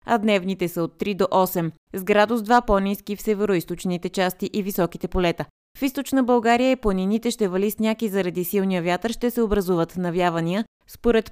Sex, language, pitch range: female, Bulgarian, 175-220 Hz